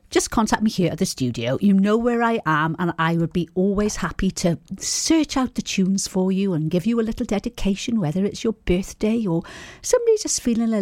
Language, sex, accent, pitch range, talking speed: English, female, British, 165-215 Hz, 220 wpm